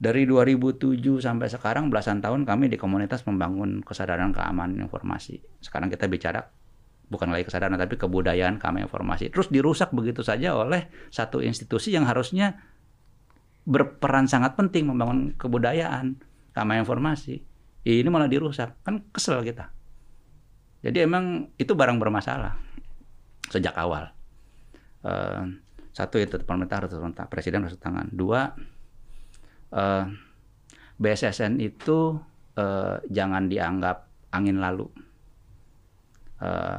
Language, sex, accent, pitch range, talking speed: Indonesian, male, native, 95-130 Hz, 110 wpm